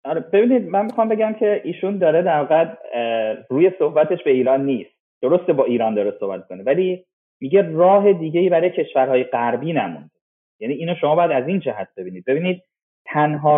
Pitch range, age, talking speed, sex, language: 135-190 Hz, 30-49, 170 wpm, male, Persian